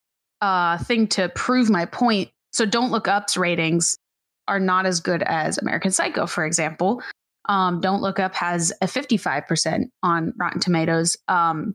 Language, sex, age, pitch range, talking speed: English, female, 20-39, 175-225 Hz, 160 wpm